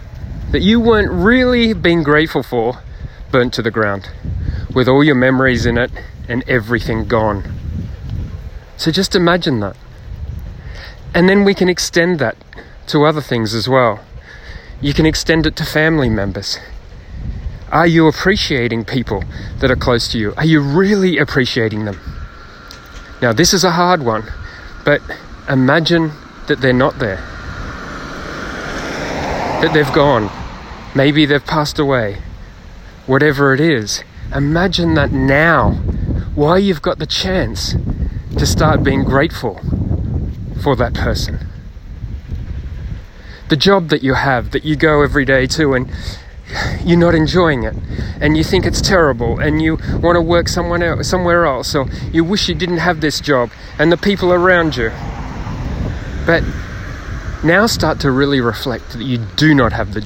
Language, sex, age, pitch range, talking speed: English, male, 30-49, 105-160 Hz, 145 wpm